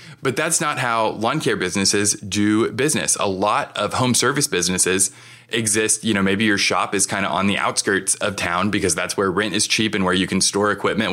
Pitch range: 100-125 Hz